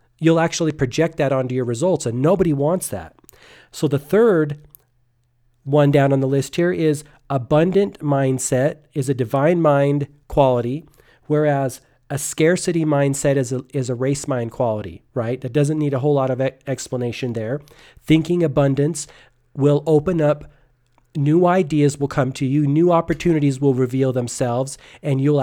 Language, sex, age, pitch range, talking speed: English, male, 40-59, 130-155 Hz, 155 wpm